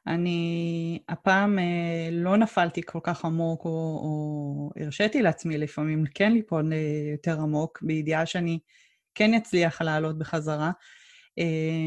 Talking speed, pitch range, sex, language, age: 110 wpm, 160-180 Hz, female, Hebrew, 20-39